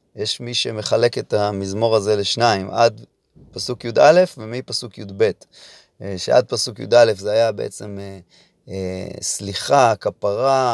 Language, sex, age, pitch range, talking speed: Hebrew, male, 30-49, 100-135 Hz, 125 wpm